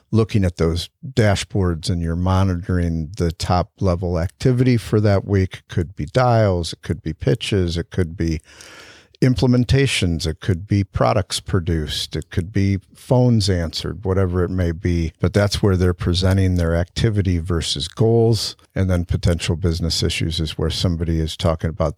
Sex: male